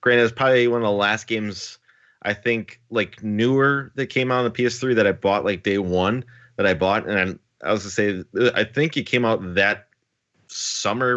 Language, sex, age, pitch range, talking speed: English, male, 20-39, 100-120 Hz, 210 wpm